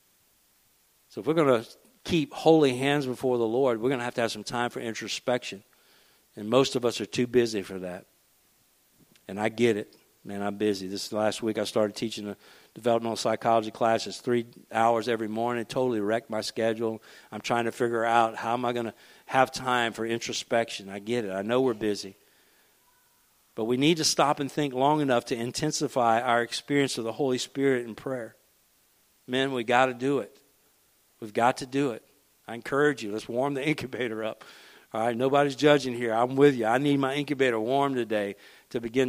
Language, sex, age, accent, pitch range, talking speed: English, male, 50-69, American, 115-140 Hz, 205 wpm